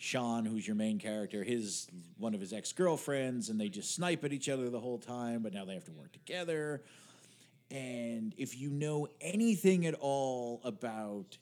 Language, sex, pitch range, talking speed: English, male, 115-150 Hz, 185 wpm